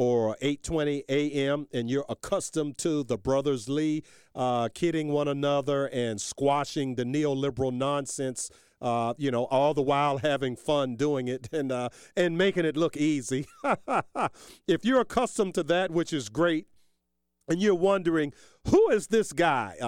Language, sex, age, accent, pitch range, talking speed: English, male, 40-59, American, 120-155 Hz, 155 wpm